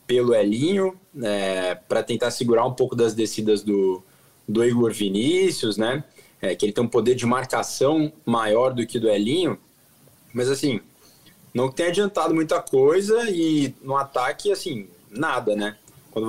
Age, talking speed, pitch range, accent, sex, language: 20-39, 155 wpm, 110-155 Hz, Brazilian, male, Portuguese